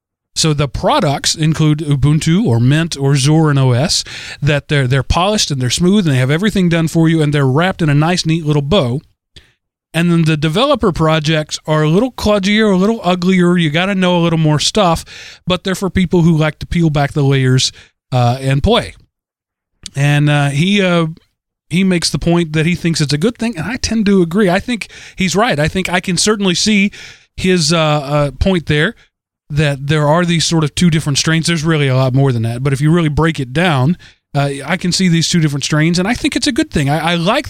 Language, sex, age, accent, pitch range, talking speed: English, male, 30-49, American, 145-180 Hz, 230 wpm